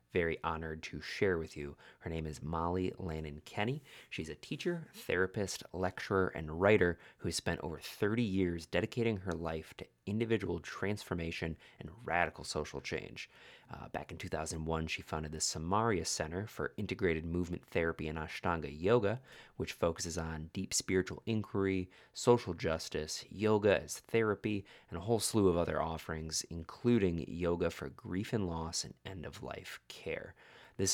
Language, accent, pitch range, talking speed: English, American, 80-95 Hz, 150 wpm